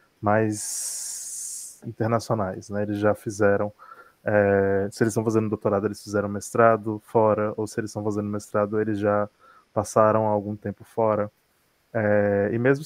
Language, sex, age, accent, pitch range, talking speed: Portuguese, male, 20-39, Brazilian, 105-115 Hz, 145 wpm